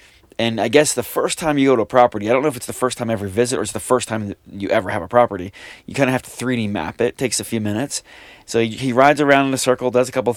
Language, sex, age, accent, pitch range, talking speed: English, male, 30-49, American, 110-130 Hz, 320 wpm